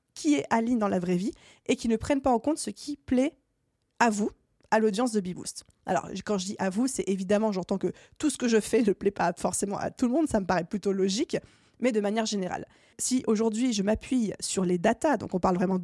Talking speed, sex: 255 wpm, female